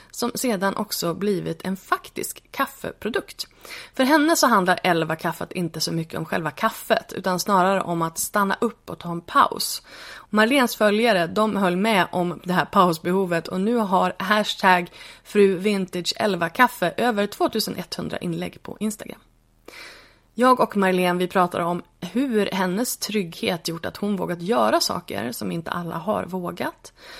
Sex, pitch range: female, 175-235 Hz